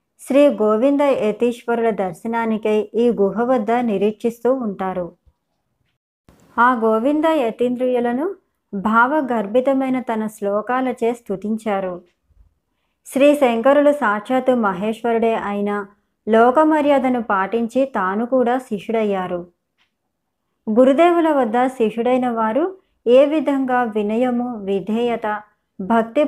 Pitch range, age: 210-255 Hz, 20-39